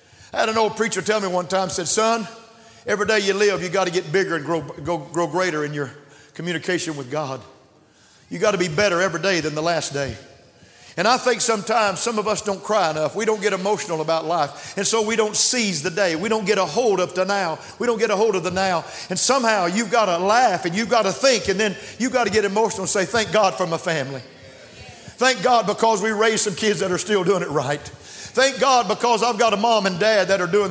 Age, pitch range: 50-69, 160-220 Hz